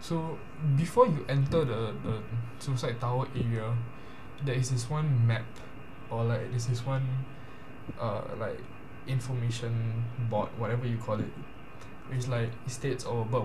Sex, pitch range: male, 120-135 Hz